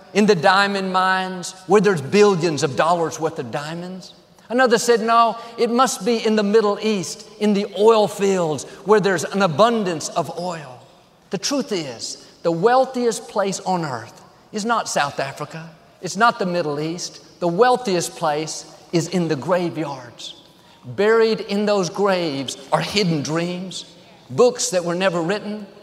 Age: 50-69